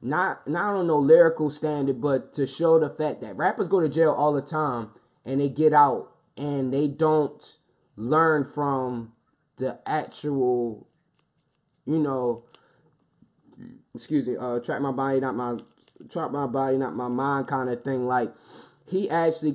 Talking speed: 160 wpm